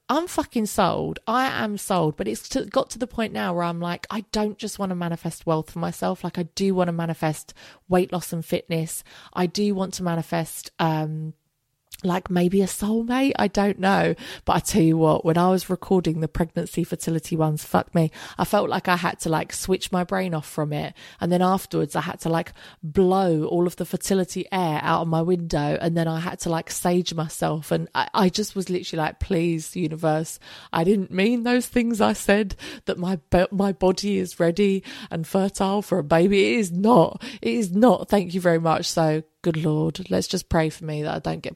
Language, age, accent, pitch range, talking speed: English, 20-39, British, 160-195 Hz, 215 wpm